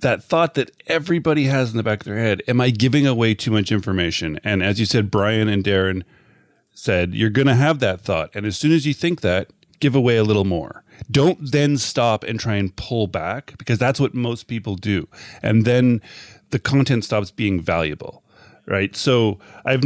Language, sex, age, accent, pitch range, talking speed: English, male, 30-49, American, 100-130 Hz, 205 wpm